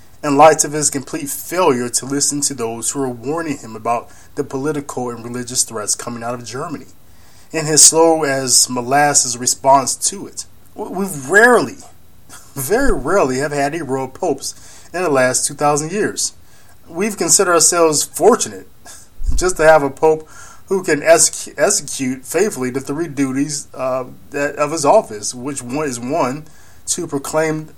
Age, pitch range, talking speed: 20-39, 120-150 Hz, 155 wpm